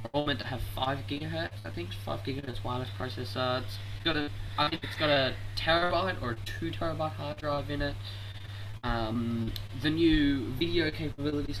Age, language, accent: 10-29, English, Australian